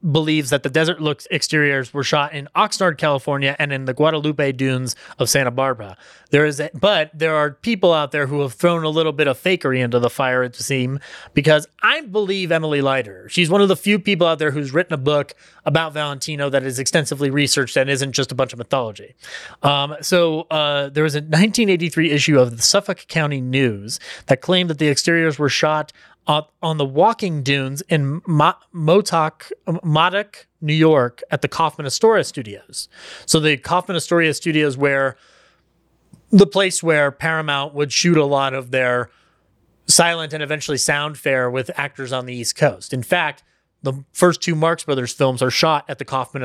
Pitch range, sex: 135-165 Hz, male